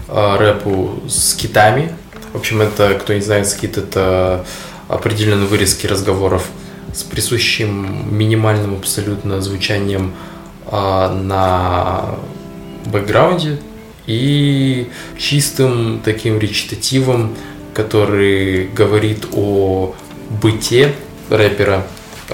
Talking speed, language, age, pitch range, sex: 85 wpm, Russian, 20-39, 95-115 Hz, male